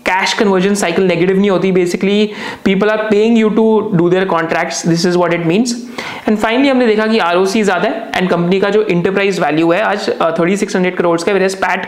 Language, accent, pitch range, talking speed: Hindi, native, 175-220 Hz, 220 wpm